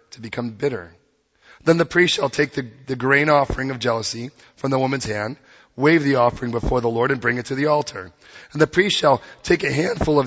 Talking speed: 220 wpm